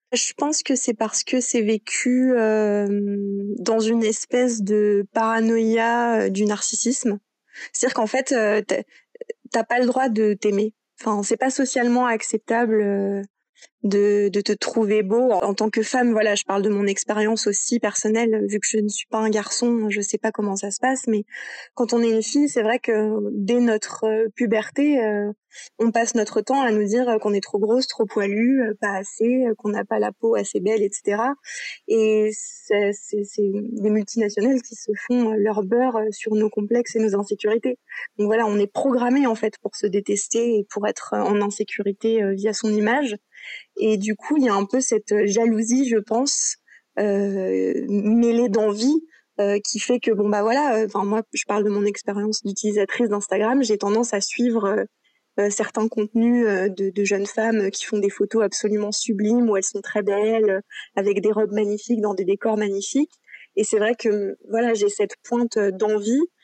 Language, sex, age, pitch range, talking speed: French, female, 20-39, 205-235 Hz, 190 wpm